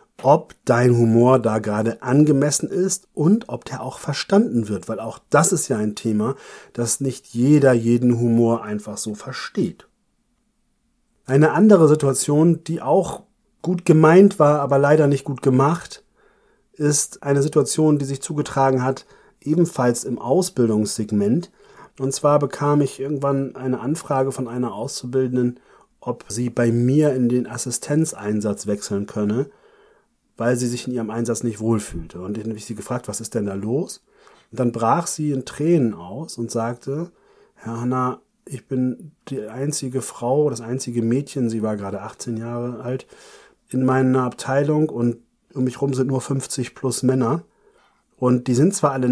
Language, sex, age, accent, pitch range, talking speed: German, male, 40-59, German, 120-155 Hz, 160 wpm